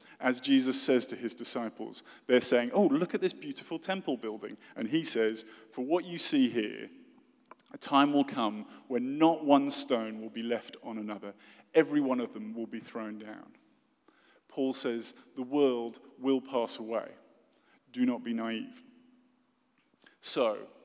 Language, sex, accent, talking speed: English, male, British, 160 wpm